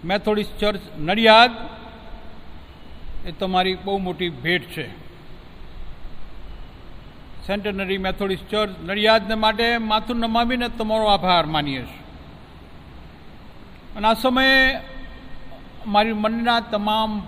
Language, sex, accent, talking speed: Gujarati, male, native, 65 wpm